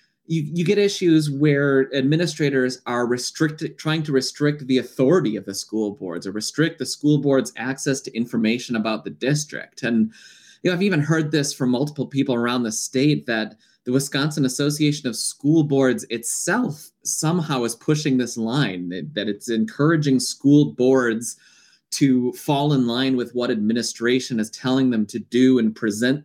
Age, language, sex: 20-39, English, male